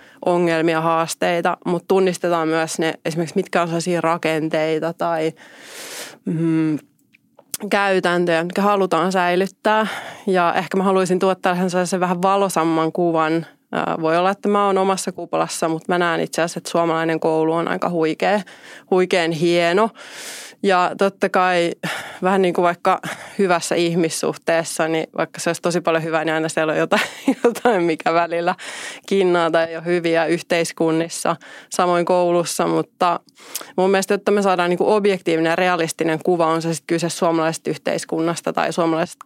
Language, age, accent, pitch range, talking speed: Finnish, 20-39, native, 165-185 Hz, 140 wpm